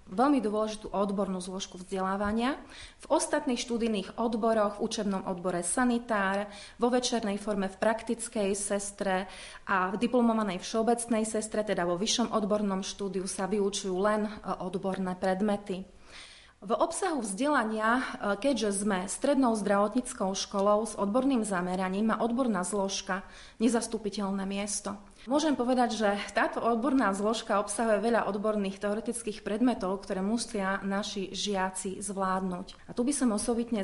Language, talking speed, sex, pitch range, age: Slovak, 125 wpm, female, 195-230 Hz, 30-49